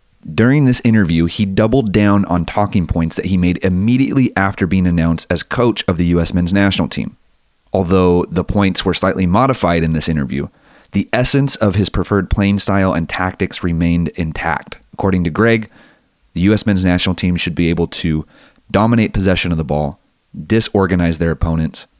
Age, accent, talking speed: 30-49, American, 175 wpm